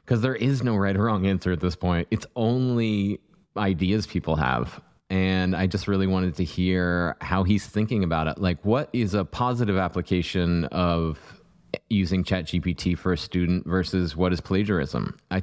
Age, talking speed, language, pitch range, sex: 20-39, 180 wpm, English, 90-100 Hz, male